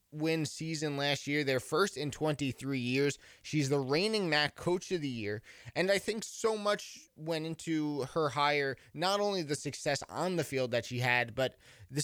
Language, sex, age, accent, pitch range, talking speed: English, male, 20-39, American, 125-150 Hz, 190 wpm